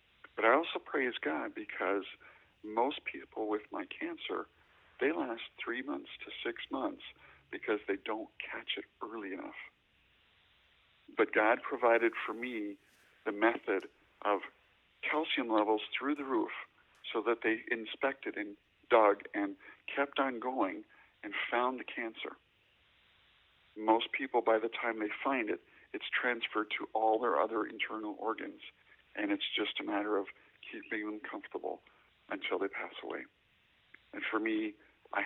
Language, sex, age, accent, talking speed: English, male, 50-69, American, 145 wpm